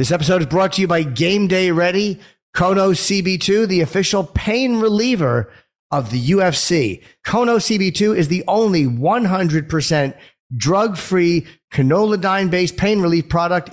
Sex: male